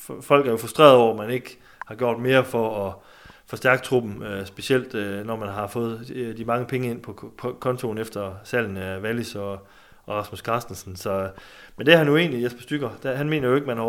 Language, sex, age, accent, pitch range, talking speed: Danish, male, 30-49, native, 105-130 Hz, 205 wpm